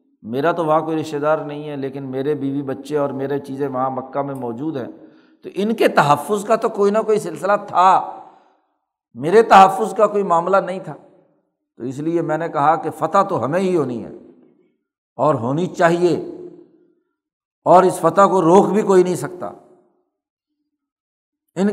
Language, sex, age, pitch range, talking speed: Urdu, male, 60-79, 150-210 Hz, 175 wpm